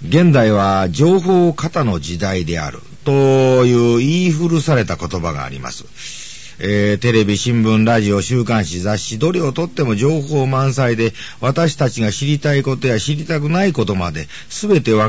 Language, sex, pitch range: Japanese, male, 110-155 Hz